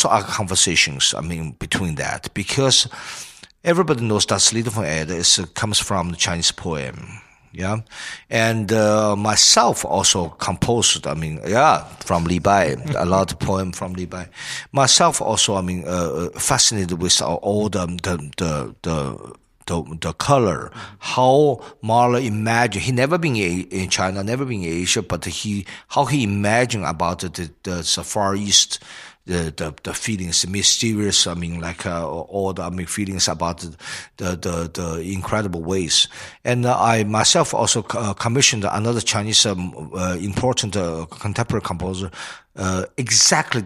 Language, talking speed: German, 155 wpm